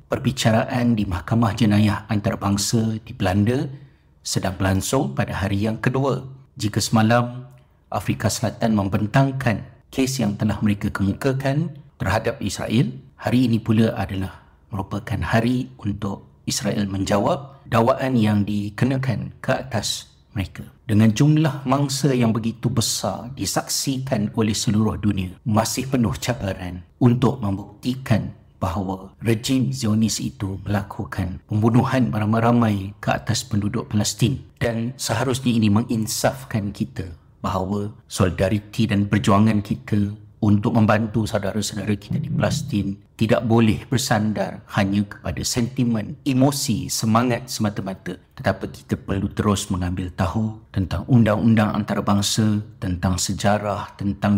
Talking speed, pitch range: 115 wpm, 100-120 Hz